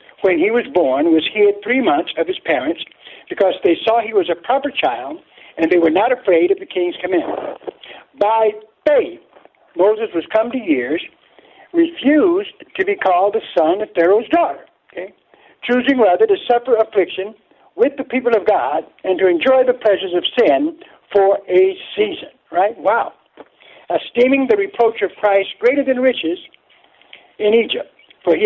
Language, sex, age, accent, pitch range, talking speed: English, male, 60-79, American, 205-300 Hz, 165 wpm